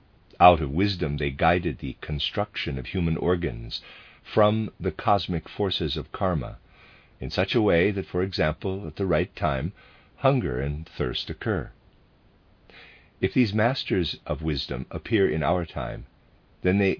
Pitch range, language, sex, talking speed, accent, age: 75-95 Hz, English, male, 150 wpm, American, 50-69